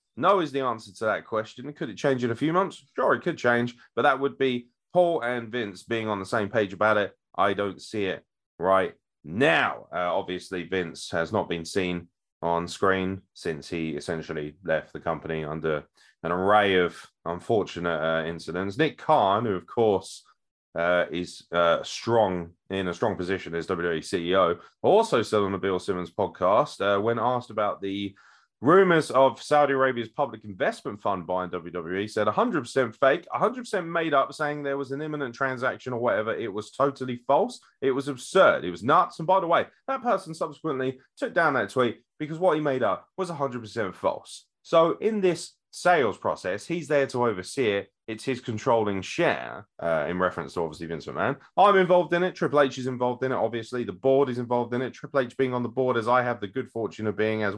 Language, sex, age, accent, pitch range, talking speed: English, male, 30-49, British, 95-140 Hz, 200 wpm